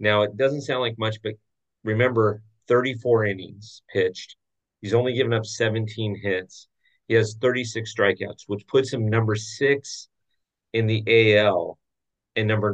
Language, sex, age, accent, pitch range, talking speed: English, male, 40-59, American, 100-125 Hz, 145 wpm